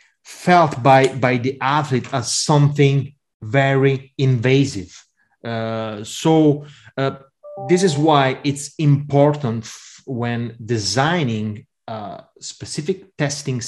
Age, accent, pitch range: 30-49, Italian, 120-150 Hz